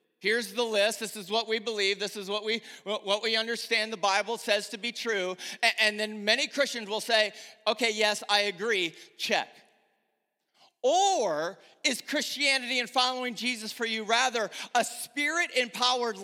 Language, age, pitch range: English, 40-59, 220-290 Hz